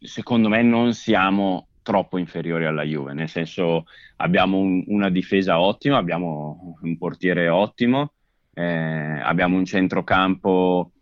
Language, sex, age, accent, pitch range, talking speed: Italian, male, 20-39, native, 85-100 Hz, 120 wpm